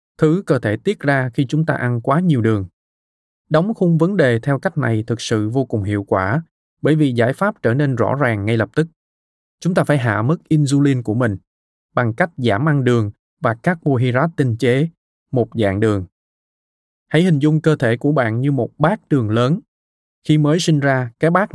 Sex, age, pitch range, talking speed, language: male, 20-39, 110-155 Hz, 210 wpm, Vietnamese